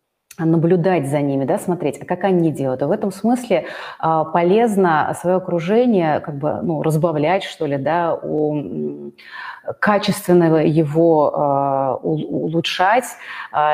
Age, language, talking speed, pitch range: 30-49, Russian, 120 wpm, 155-190 Hz